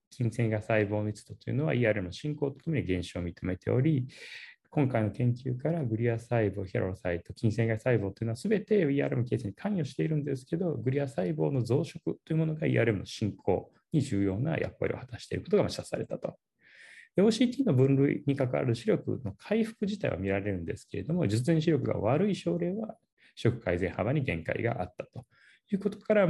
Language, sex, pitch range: Japanese, male, 105-155 Hz